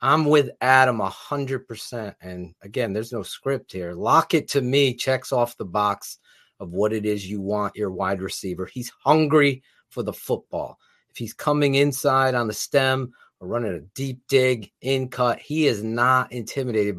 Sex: male